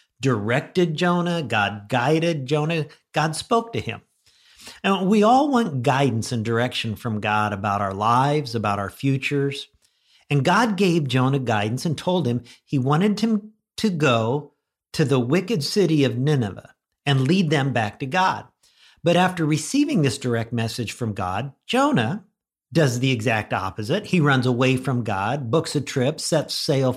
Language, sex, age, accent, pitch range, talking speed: English, male, 50-69, American, 120-170 Hz, 160 wpm